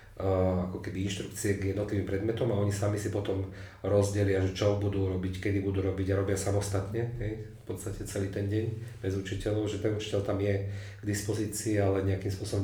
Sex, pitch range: male, 95-105 Hz